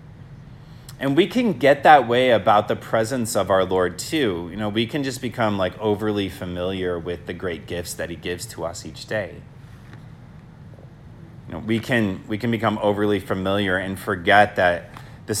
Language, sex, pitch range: English, male, 95-135 Hz